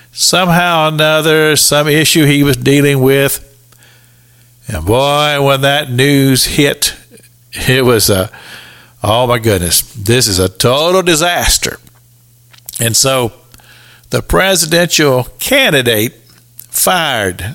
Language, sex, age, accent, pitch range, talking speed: English, male, 50-69, American, 115-155 Hz, 110 wpm